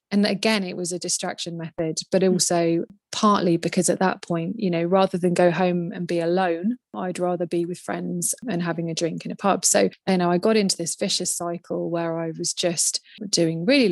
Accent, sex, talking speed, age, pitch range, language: British, female, 215 wpm, 20-39, 170-190 Hz, English